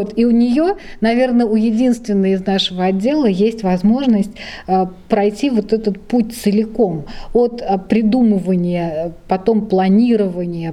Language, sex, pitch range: Russian, female, 190-230 Hz